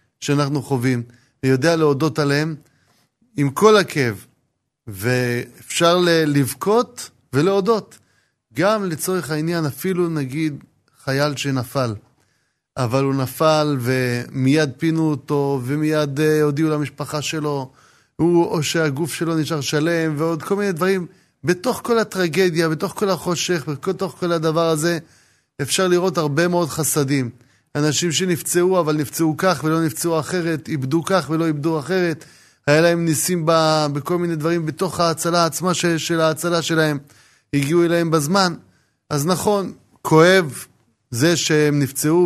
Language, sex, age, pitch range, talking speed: Hebrew, male, 30-49, 135-170 Hz, 125 wpm